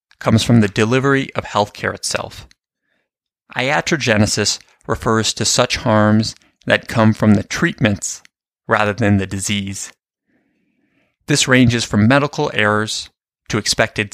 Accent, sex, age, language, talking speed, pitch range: American, male, 30-49, English, 125 wpm, 100-120 Hz